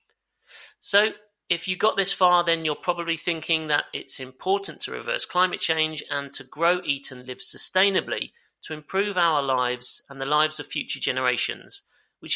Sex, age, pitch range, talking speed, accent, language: male, 40-59, 140-180 Hz, 170 wpm, British, English